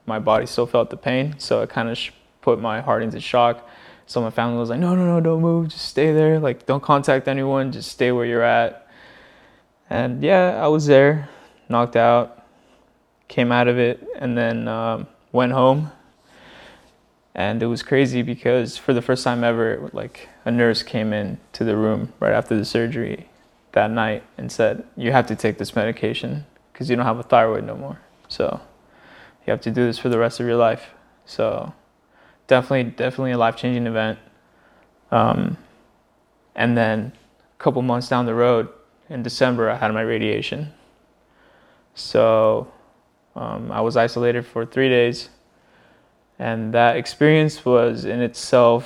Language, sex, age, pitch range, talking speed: English, male, 20-39, 115-130 Hz, 170 wpm